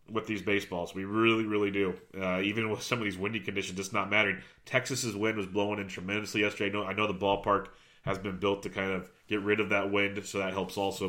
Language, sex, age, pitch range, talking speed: English, male, 30-49, 95-105 Hz, 250 wpm